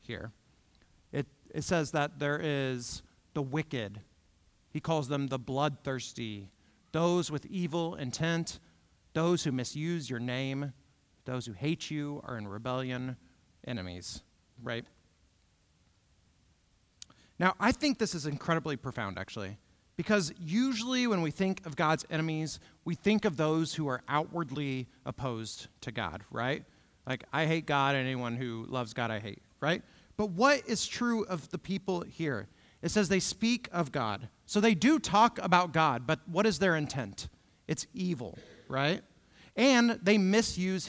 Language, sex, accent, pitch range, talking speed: English, male, American, 115-170 Hz, 150 wpm